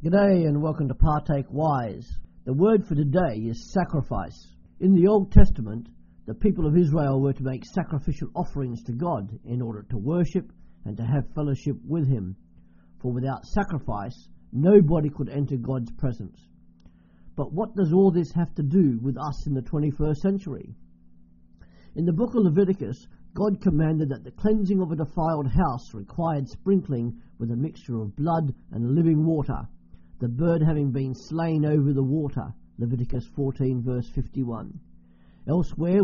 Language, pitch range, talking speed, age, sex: English, 115-165 Hz, 160 wpm, 50-69, male